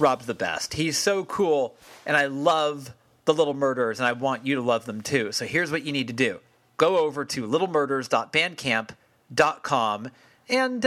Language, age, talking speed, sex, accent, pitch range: English, 40-59, 175 wpm, male, American, 125-180 Hz